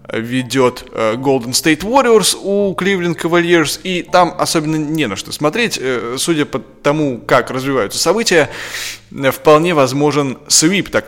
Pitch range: 125-170 Hz